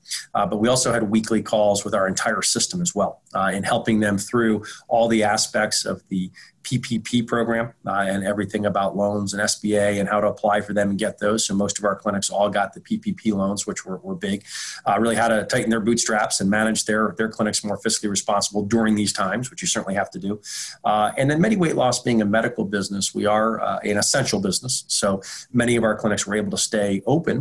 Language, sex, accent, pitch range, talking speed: English, male, American, 100-120 Hz, 230 wpm